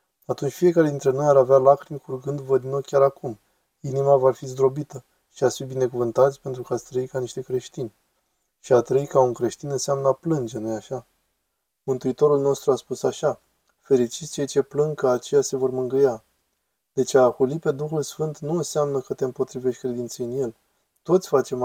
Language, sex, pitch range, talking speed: Romanian, male, 125-155 Hz, 190 wpm